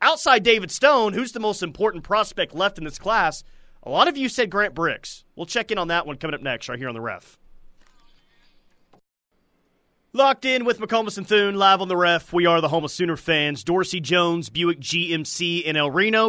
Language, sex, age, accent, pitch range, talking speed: English, male, 30-49, American, 150-190 Hz, 210 wpm